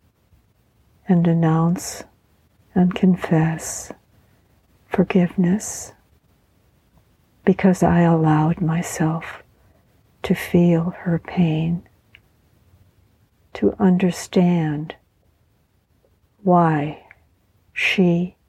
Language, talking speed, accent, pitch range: English, 55 wpm, American, 120-185 Hz